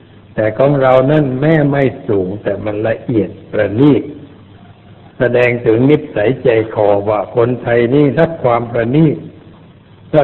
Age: 60-79